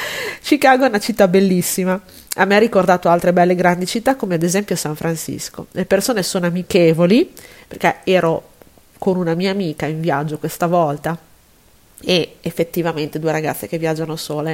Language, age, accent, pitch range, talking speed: Italian, 30-49, native, 165-200 Hz, 160 wpm